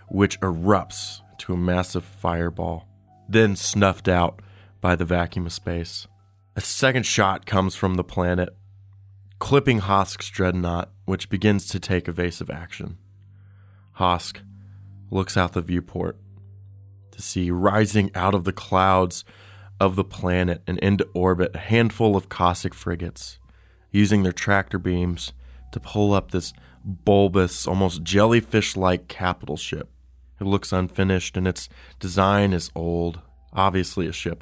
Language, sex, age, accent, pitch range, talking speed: English, male, 20-39, American, 90-100 Hz, 135 wpm